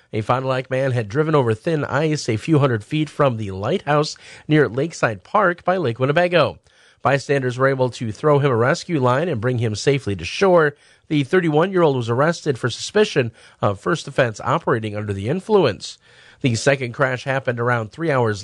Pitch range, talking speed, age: 120-165 Hz, 180 wpm, 40-59